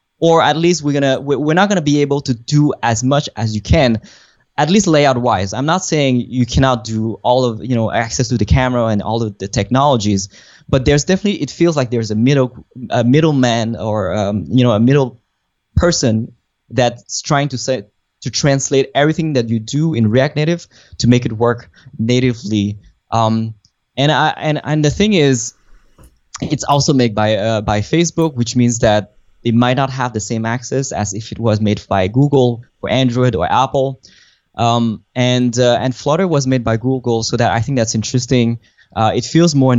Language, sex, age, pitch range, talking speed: English, male, 20-39, 110-140 Hz, 200 wpm